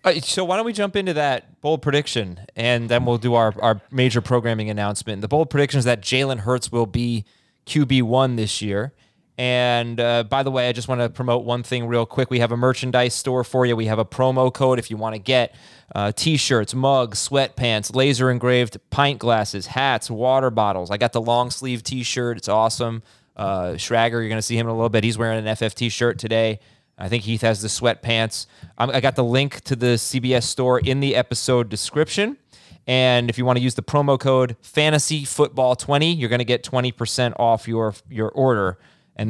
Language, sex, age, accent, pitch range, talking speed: English, male, 20-39, American, 115-130 Hz, 205 wpm